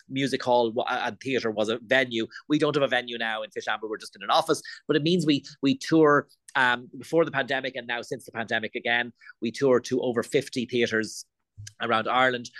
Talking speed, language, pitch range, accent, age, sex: 210 wpm, English, 115-130 Hz, Irish, 30-49, male